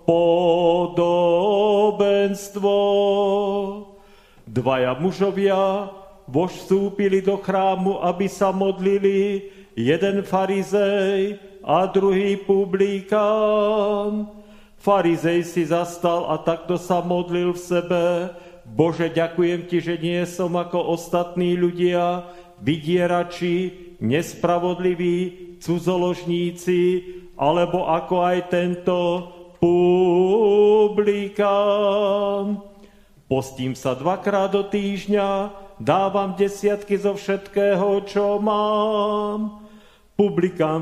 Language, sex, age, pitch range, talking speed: Slovak, male, 40-59, 175-200 Hz, 75 wpm